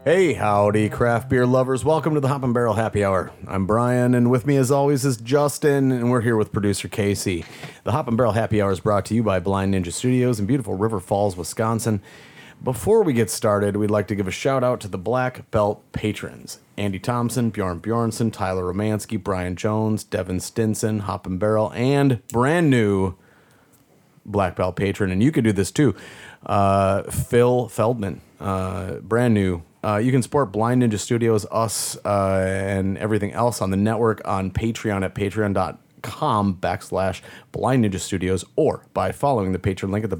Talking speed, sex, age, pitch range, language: 185 wpm, male, 30-49, 95-120 Hz, English